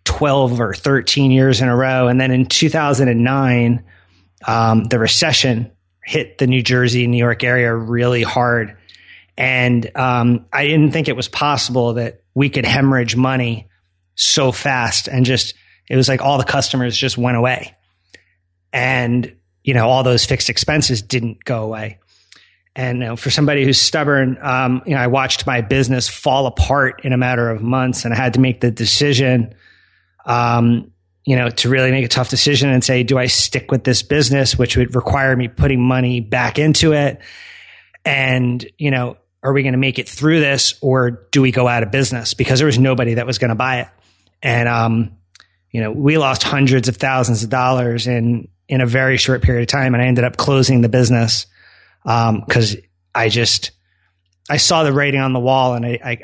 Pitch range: 115-130 Hz